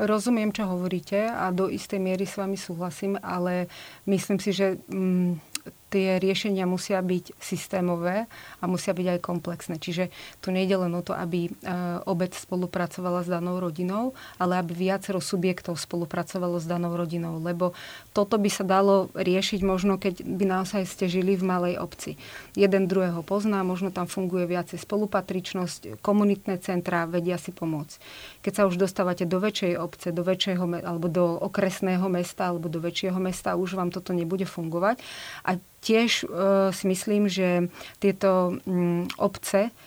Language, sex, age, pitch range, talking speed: Slovak, female, 30-49, 180-195 Hz, 155 wpm